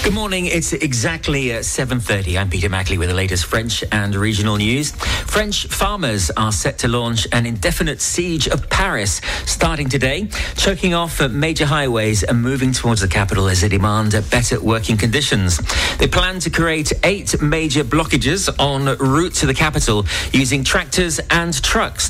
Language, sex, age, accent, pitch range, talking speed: English, male, 40-59, British, 95-135 Hz, 165 wpm